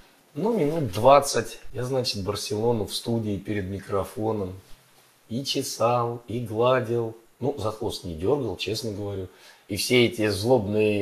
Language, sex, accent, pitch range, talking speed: Russian, male, native, 105-145 Hz, 135 wpm